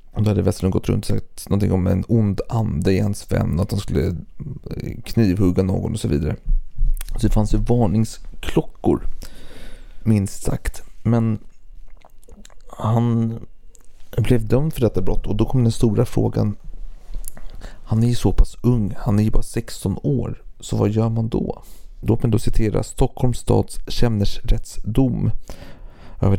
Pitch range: 100-120 Hz